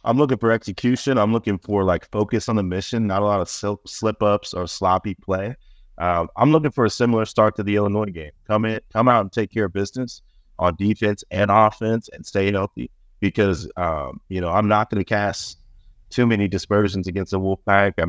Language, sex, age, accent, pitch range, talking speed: English, male, 30-49, American, 90-105 Hz, 210 wpm